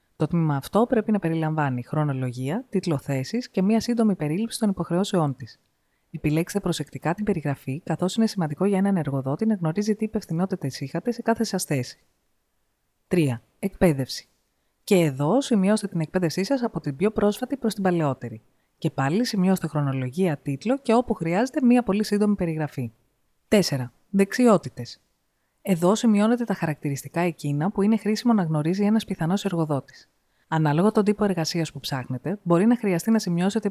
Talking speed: 155 wpm